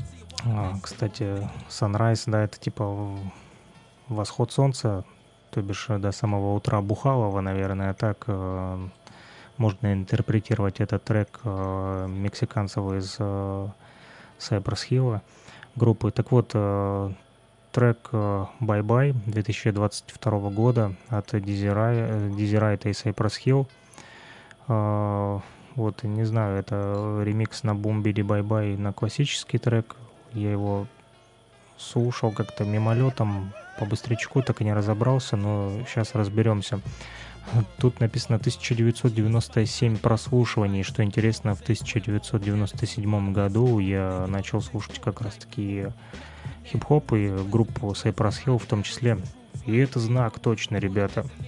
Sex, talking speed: male, 115 wpm